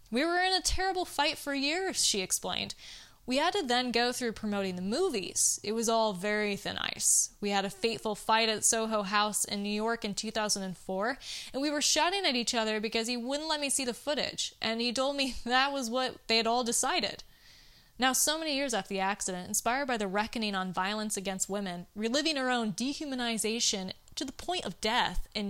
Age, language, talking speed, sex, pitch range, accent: 20-39, English, 210 wpm, female, 200-260 Hz, American